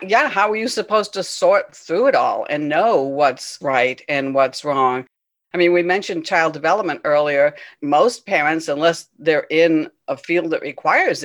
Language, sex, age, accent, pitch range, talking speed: English, female, 60-79, American, 145-215 Hz, 175 wpm